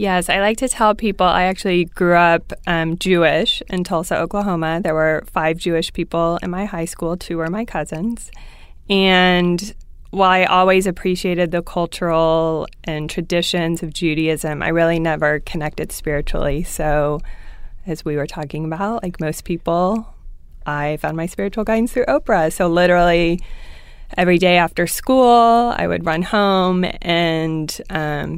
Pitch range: 155-180 Hz